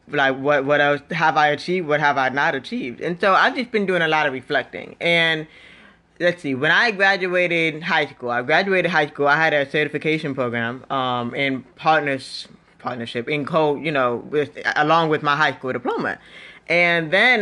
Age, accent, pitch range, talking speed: 20-39, American, 135-165 Hz, 195 wpm